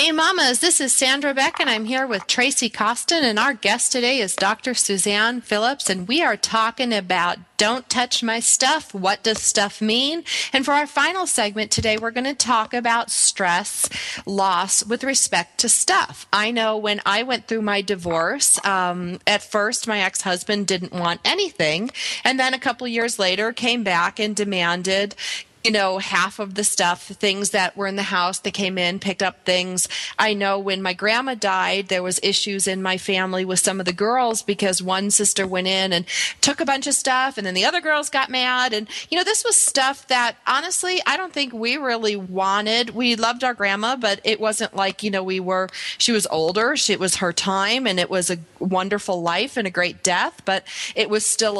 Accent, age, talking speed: American, 30-49, 205 wpm